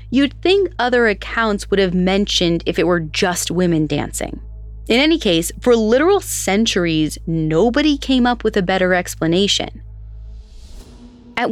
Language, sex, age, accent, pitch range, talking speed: English, female, 20-39, American, 170-245 Hz, 140 wpm